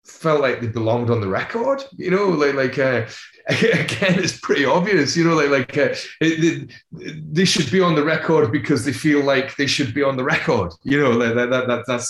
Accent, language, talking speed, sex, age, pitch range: British, German, 220 wpm, male, 30-49, 120-160 Hz